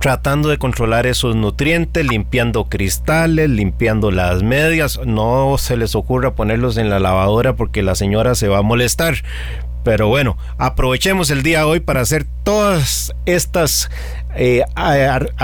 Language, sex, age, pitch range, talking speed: Spanish, male, 40-59, 105-140 Hz, 140 wpm